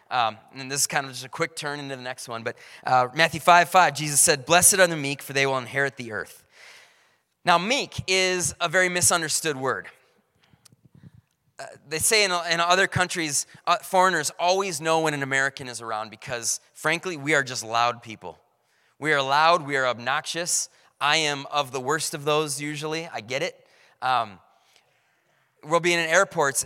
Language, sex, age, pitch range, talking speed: English, male, 20-39, 140-175 Hz, 190 wpm